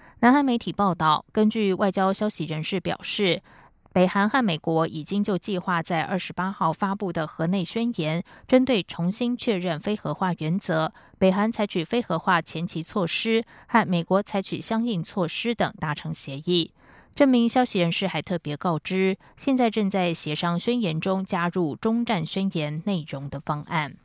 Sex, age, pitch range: female, 20-39, 160-215 Hz